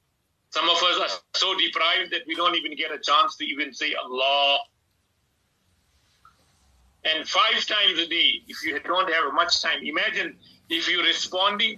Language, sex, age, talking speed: English, male, 50-69, 165 wpm